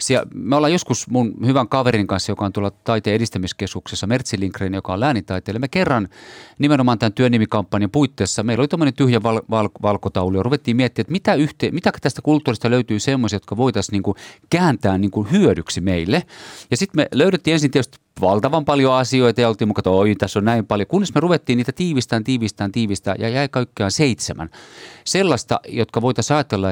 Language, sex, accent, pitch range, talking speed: Finnish, male, native, 105-140 Hz, 180 wpm